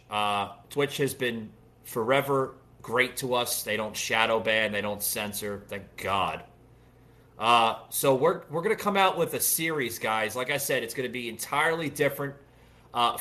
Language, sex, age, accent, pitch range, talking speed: English, male, 30-49, American, 115-145 Hz, 175 wpm